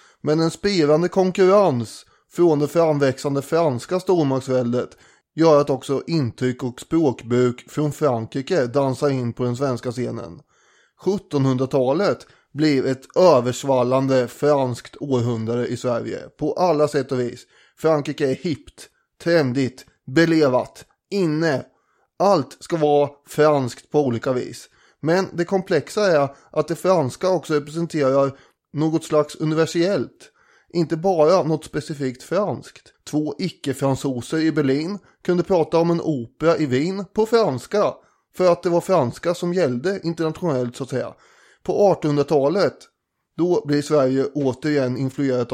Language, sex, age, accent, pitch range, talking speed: English, male, 20-39, Swedish, 130-165 Hz, 130 wpm